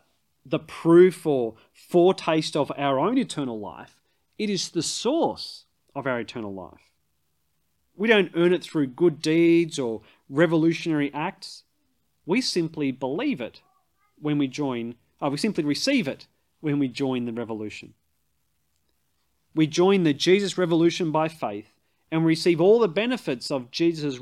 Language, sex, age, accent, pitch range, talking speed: English, male, 30-49, Australian, 105-170 Hz, 145 wpm